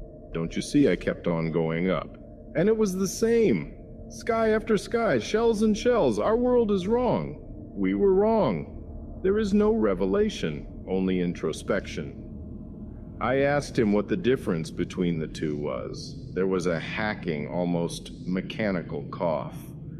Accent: American